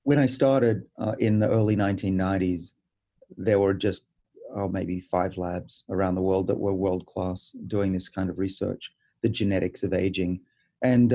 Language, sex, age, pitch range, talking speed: English, male, 30-49, 95-115 Hz, 165 wpm